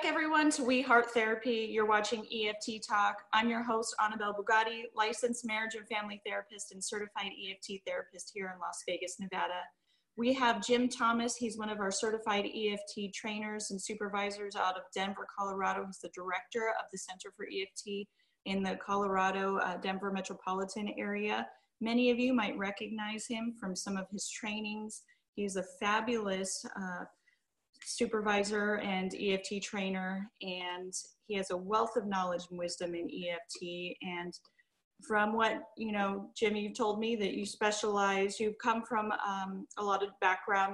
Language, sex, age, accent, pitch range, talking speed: English, female, 30-49, American, 190-225 Hz, 165 wpm